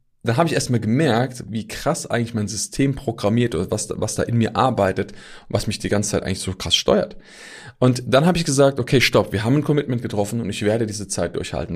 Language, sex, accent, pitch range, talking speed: German, male, German, 105-135 Hz, 240 wpm